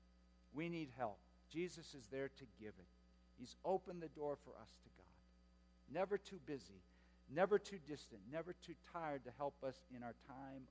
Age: 50-69